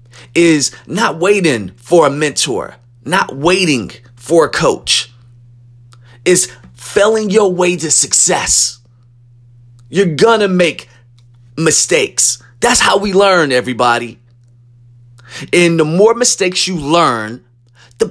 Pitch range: 120-200 Hz